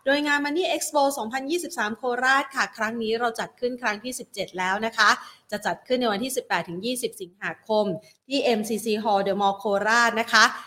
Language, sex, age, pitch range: Thai, female, 30-49, 205-250 Hz